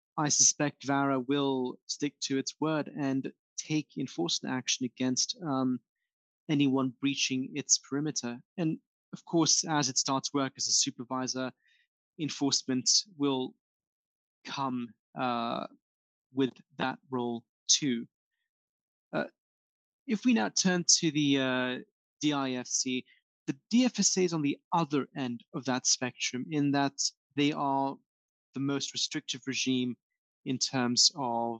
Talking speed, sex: 125 wpm, male